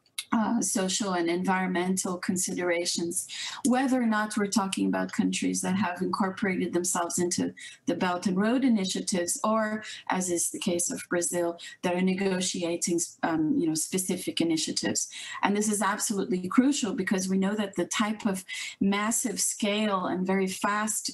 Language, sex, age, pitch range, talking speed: English, female, 30-49, 180-220 Hz, 155 wpm